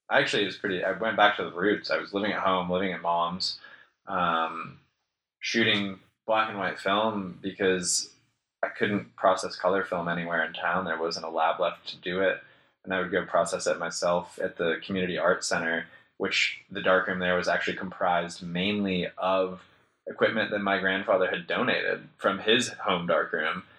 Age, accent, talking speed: 20-39, American, 185 wpm